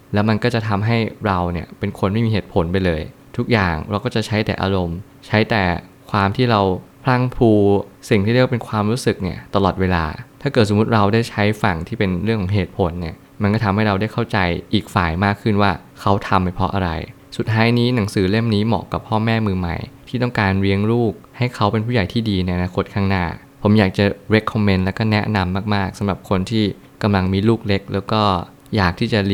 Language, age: Thai, 20-39